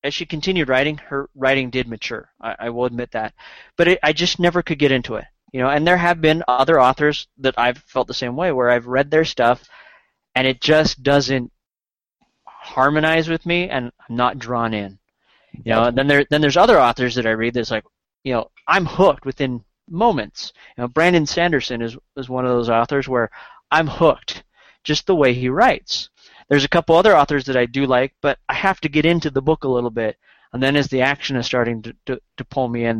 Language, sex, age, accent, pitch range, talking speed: English, male, 20-39, American, 120-155 Hz, 225 wpm